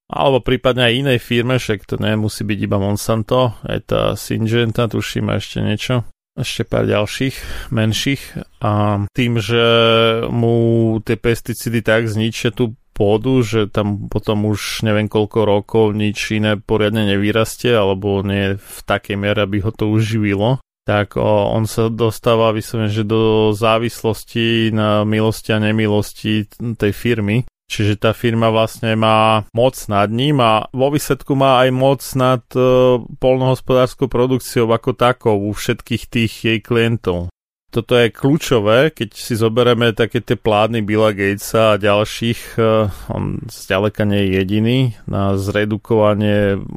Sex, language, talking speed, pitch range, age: male, Slovak, 140 wpm, 105-120 Hz, 20-39